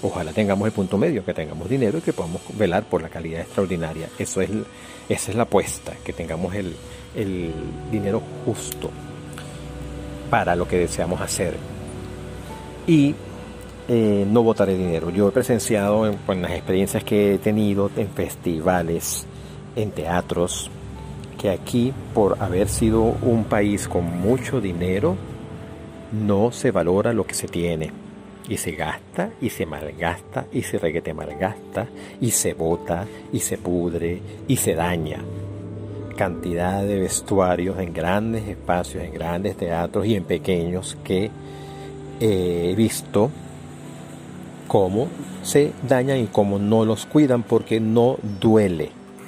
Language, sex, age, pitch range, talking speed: Spanish, male, 50-69, 85-110 Hz, 140 wpm